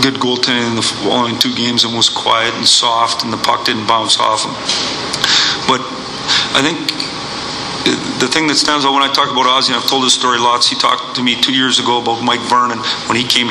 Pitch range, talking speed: 120-135 Hz, 225 wpm